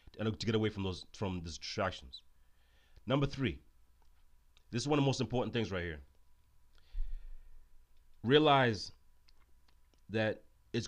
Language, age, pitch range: English, 30-49, 75-120 Hz